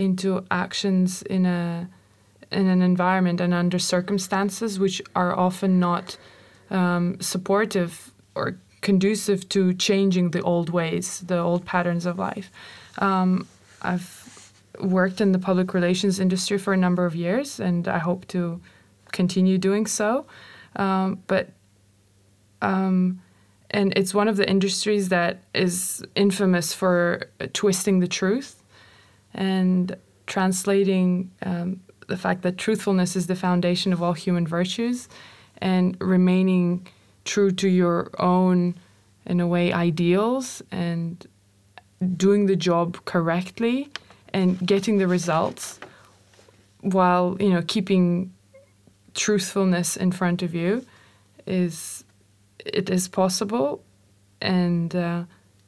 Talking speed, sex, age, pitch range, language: 120 wpm, female, 20-39, 175-195 Hz, English